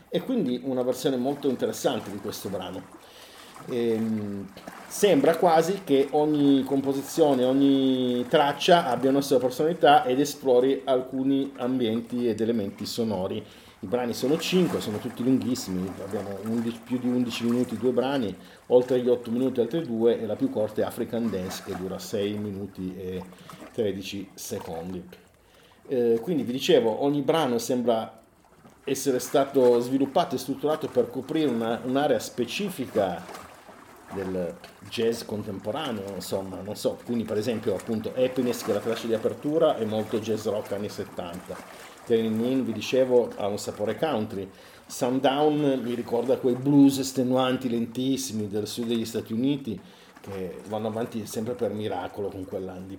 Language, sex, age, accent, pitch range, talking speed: Italian, male, 40-59, native, 110-135 Hz, 145 wpm